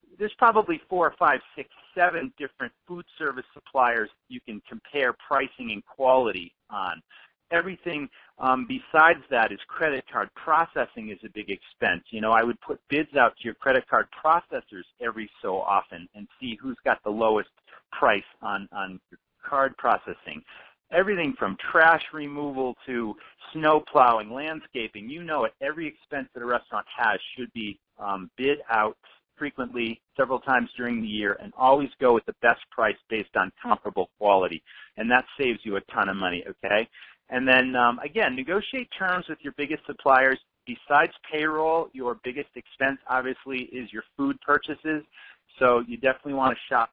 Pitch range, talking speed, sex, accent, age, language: 120-155 Hz, 160 wpm, male, American, 40-59, English